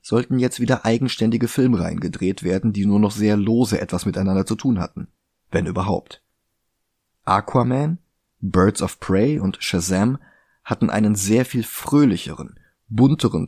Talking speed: 140 wpm